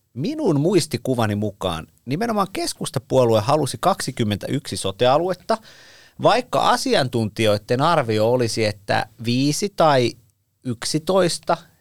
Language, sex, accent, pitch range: Finnish, male, native, 110-150 Hz